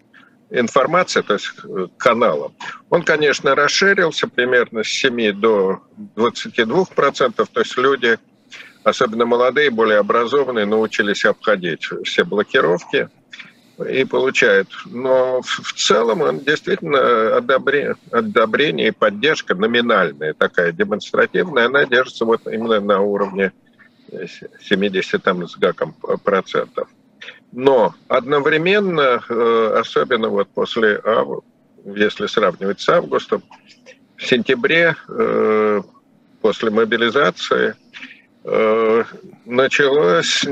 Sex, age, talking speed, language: male, 50-69, 90 wpm, Russian